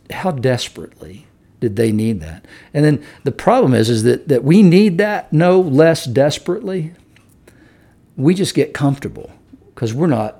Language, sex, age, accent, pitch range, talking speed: English, male, 60-79, American, 110-160 Hz, 155 wpm